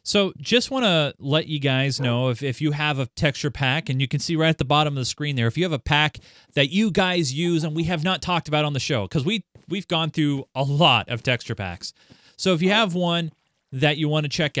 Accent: American